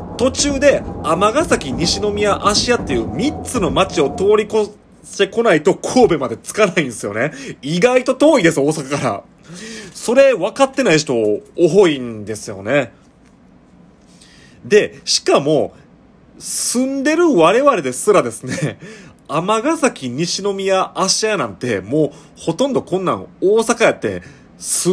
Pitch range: 145-230 Hz